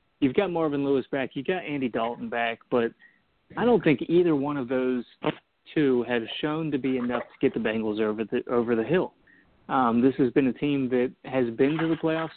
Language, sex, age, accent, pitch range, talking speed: English, male, 30-49, American, 125-155 Hz, 220 wpm